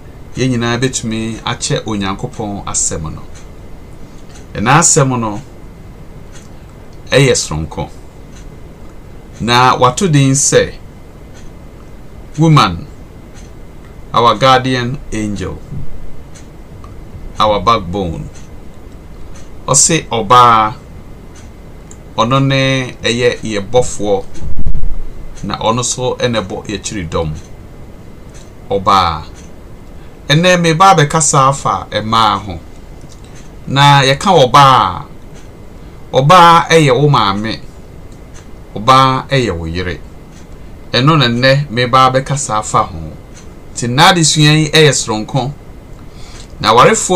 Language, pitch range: English, 95-140 Hz